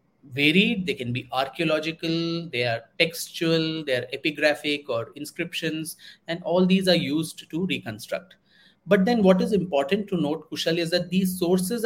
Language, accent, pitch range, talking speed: English, Indian, 150-195 Hz, 160 wpm